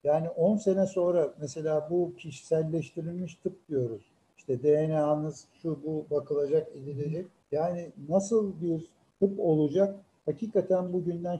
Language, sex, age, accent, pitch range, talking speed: Turkish, male, 60-79, native, 150-190 Hz, 115 wpm